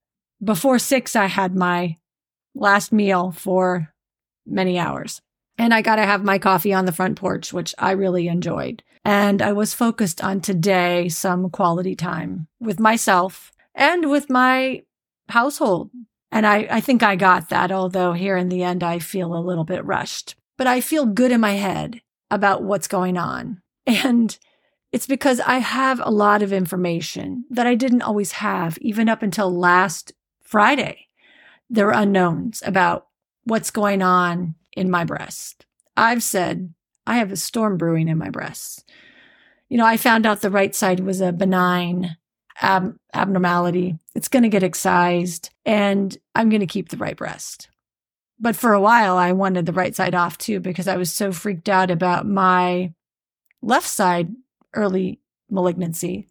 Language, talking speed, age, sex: English, 165 wpm, 40-59, female